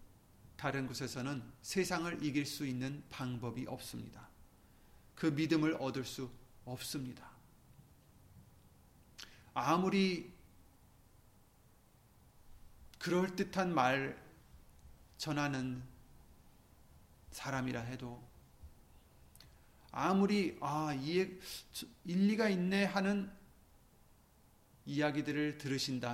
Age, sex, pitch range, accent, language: 30-49, male, 120-195 Hz, native, Korean